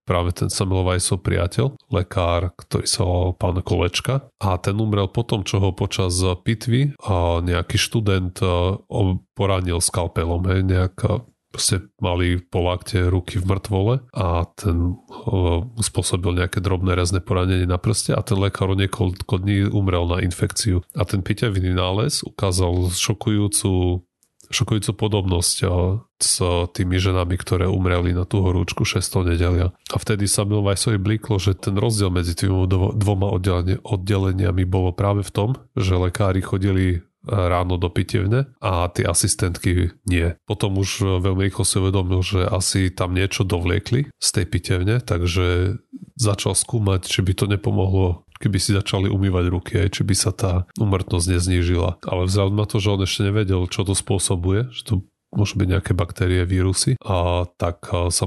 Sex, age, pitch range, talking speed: male, 30-49, 90-105 Hz, 160 wpm